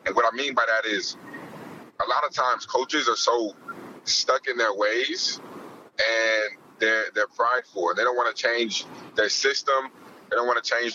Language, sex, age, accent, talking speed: English, male, 30-49, American, 185 wpm